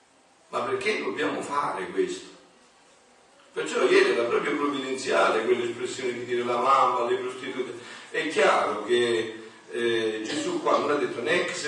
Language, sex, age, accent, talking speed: Italian, male, 50-69, native, 145 wpm